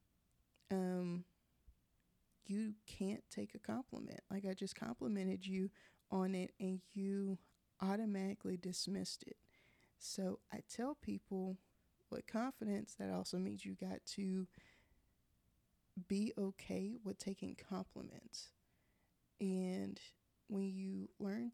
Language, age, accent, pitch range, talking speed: English, 20-39, American, 185-205 Hz, 110 wpm